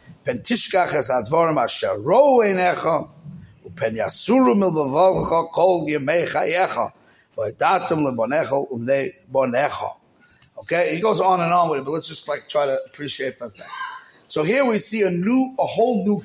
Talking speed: 100 wpm